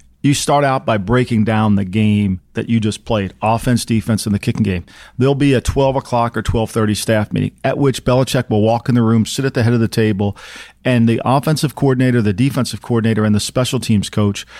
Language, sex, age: English, male, 40-59